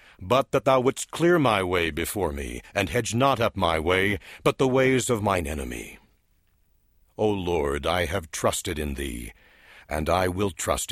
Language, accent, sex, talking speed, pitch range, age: English, American, male, 175 wpm, 85-125 Hz, 60-79